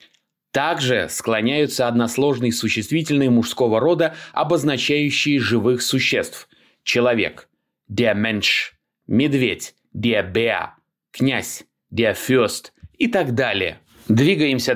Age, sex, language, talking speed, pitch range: 30-49, male, Russian, 90 wpm, 115-180 Hz